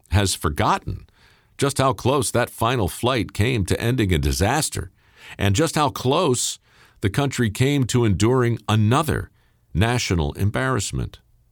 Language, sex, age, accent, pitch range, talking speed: English, male, 50-69, American, 95-120 Hz, 130 wpm